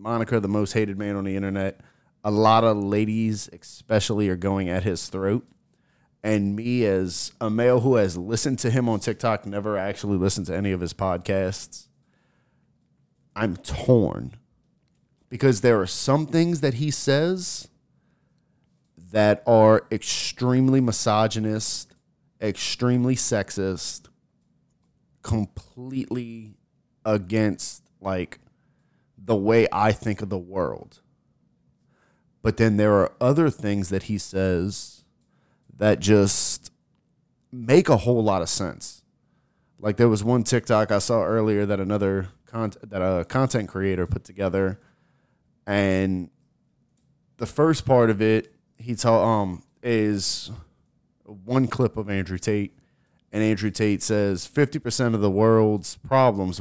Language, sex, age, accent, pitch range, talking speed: English, male, 30-49, American, 100-120 Hz, 130 wpm